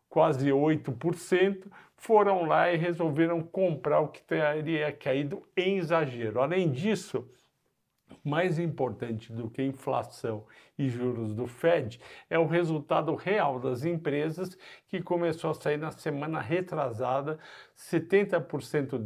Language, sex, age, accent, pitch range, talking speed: Portuguese, male, 50-69, Brazilian, 130-165 Hz, 125 wpm